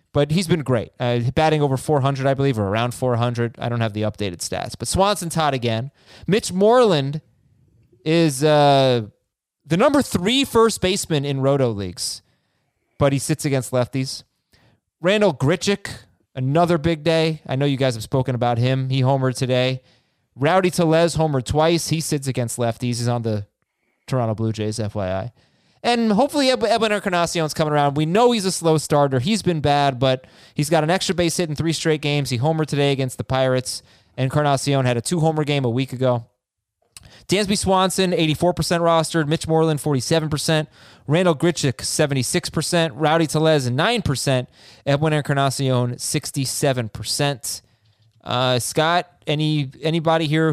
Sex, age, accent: male, 20-39, American